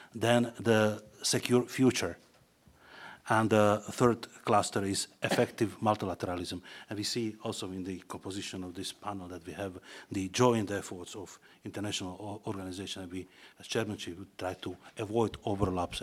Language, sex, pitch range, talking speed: Slovak, male, 95-115 Hz, 145 wpm